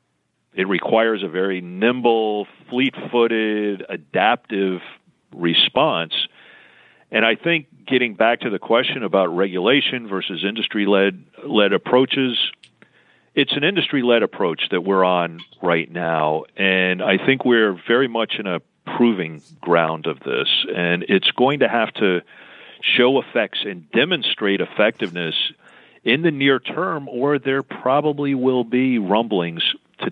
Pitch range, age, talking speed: 90-120 Hz, 50-69, 130 wpm